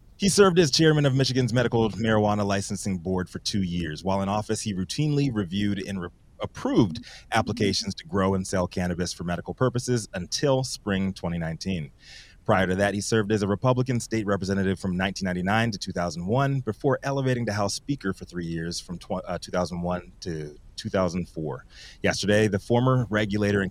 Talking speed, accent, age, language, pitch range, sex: 170 wpm, American, 30-49, English, 90-115 Hz, male